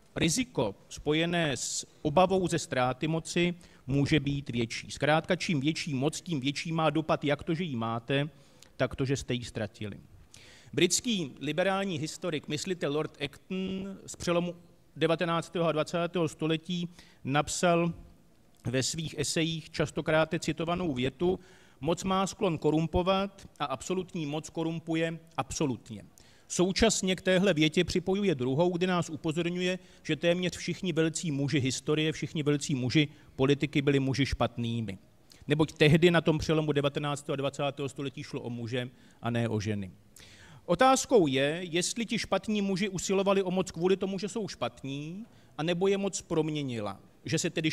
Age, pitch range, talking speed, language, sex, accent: 40-59, 140-175 Hz, 145 wpm, Czech, male, native